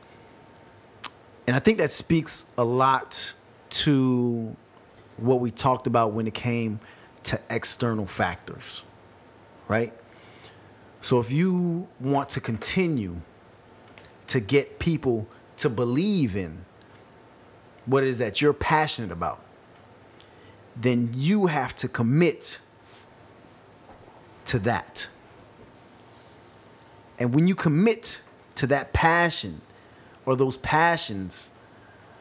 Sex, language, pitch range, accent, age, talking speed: male, English, 115-145 Hz, American, 30-49, 100 wpm